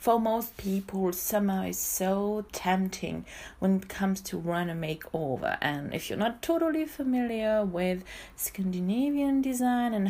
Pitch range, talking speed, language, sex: 170-215 Hz, 145 wpm, English, female